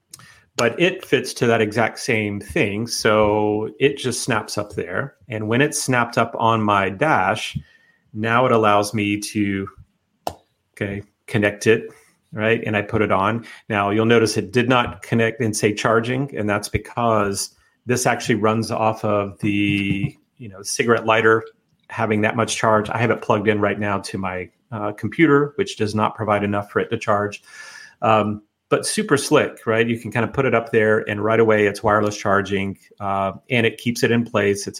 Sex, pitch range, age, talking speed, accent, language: male, 105-120 Hz, 30-49, 190 wpm, American, English